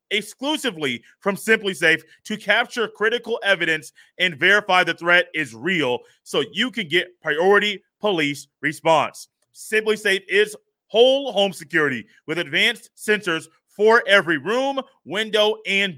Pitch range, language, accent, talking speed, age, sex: 170-220 Hz, English, American, 130 wpm, 30-49, male